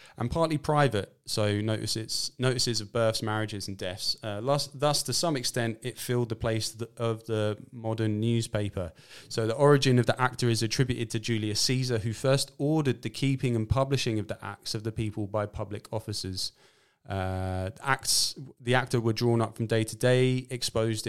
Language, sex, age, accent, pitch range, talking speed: English, male, 30-49, British, 105-125 Hz, 190 wpm